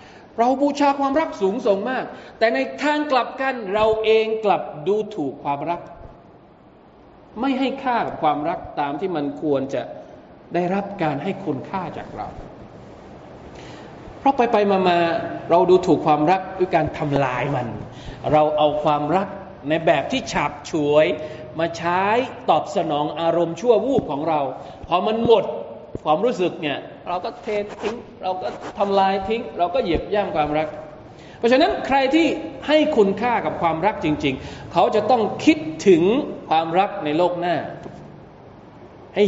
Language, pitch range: Thai, 155-215 Hz